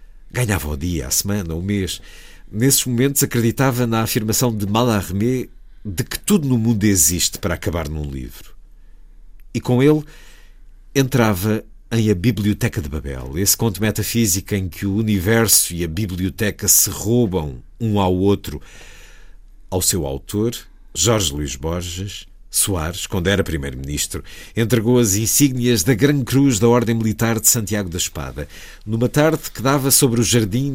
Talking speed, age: 150 wpm, 50-69